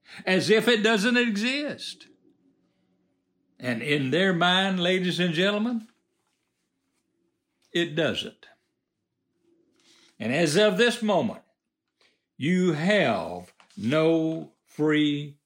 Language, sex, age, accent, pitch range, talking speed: English, male, 60-79, American, 155-235 Hz, 90 wpm